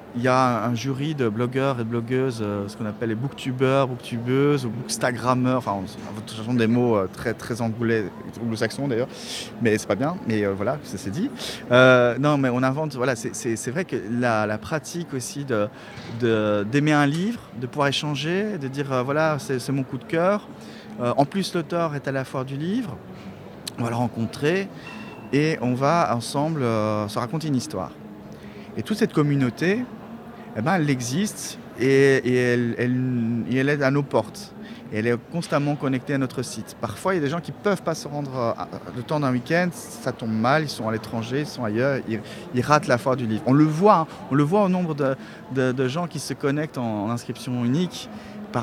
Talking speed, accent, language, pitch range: 210 wpm, French, French, 120-150 Hz